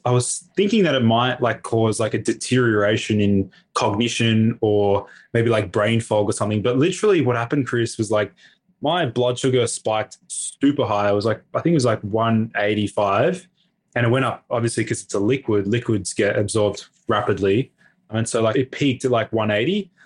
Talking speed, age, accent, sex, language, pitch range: 190 wpm, 20-39, Australian, male, English, 110-125 Hz